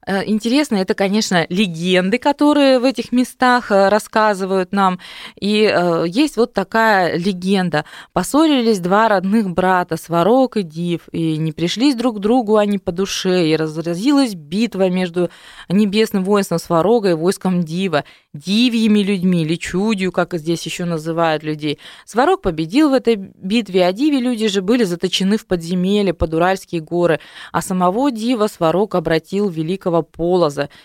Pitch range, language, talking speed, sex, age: 175-225 Hz, Russian, 145 wpm, female, 20-39